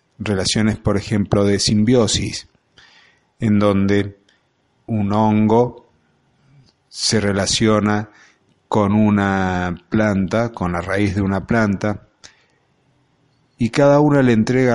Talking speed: 100 wpm